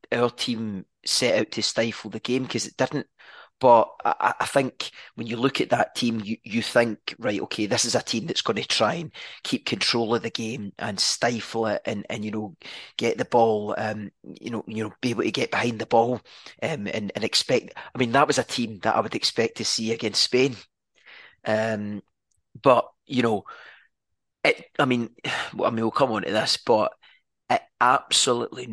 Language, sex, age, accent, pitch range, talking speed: English, male, 30-49, British, 110-120 Hz, 205 wpm